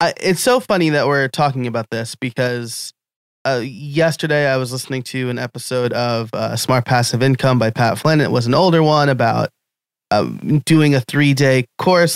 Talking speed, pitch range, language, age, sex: 185 wpm, 125-155 Hz, English, 20-39, male